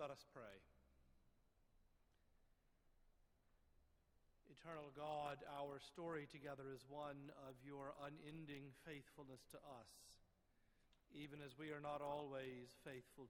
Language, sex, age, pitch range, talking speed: English, male, 50-69, 125-150 Hz, 105 wpm